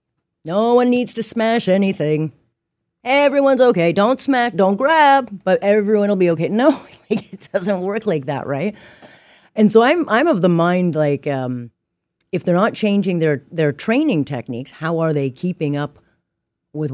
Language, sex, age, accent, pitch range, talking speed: English, female, 40-59, American, 155-220 Hz, 170 wpm